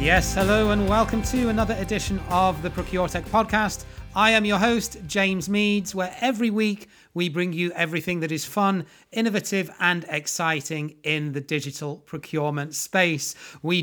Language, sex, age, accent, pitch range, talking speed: English, male, 30-49, British, 150-190 Hz, 155 wpm